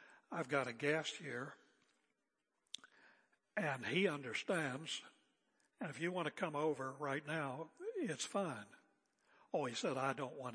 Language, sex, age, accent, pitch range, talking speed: English, male, 60-79, American, 165-250 Hz, 140 wpm